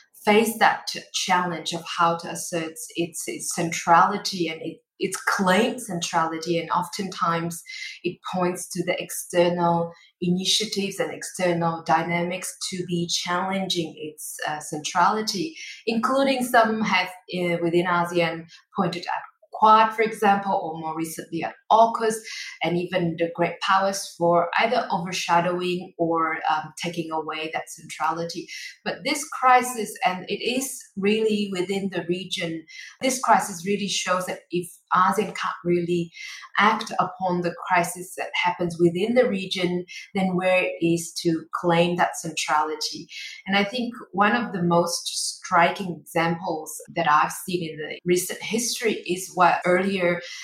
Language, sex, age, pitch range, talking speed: English, female, 20-39, 170-200 Hz, 140 wpm